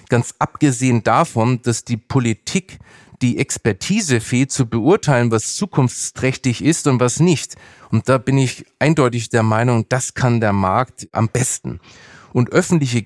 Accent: German